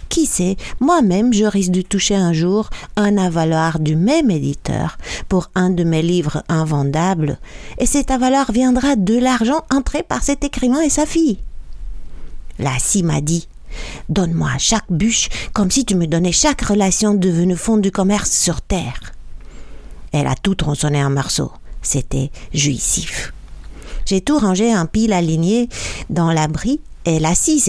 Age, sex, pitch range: 60-79, female, 150-215 Hz